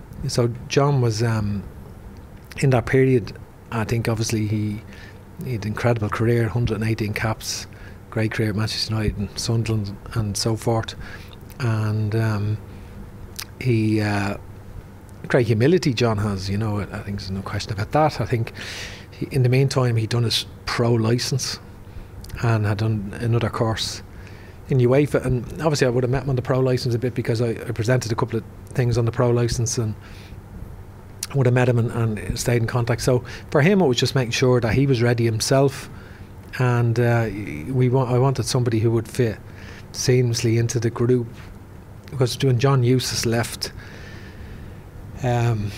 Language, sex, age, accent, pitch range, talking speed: English, male, 30-49, Irish, 100-125 Hz, 175 wpm